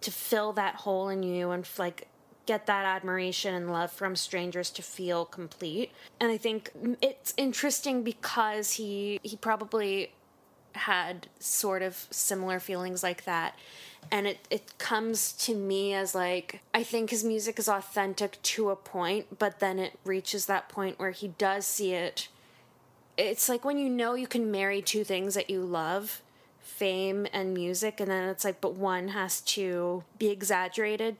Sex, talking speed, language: female, 170 wpm, English